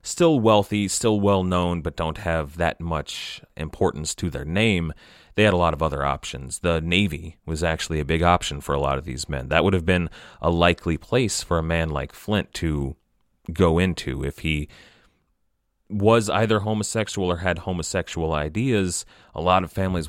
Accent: American